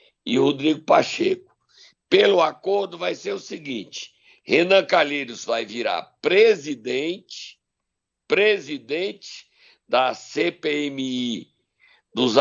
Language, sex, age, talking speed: Portuguese, male, 60-79, 85 wpm